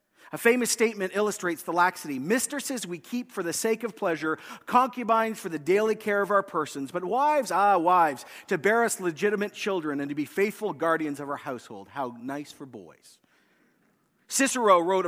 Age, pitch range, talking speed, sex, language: 40-59, 175-220 Hz, 180 wpm, male, English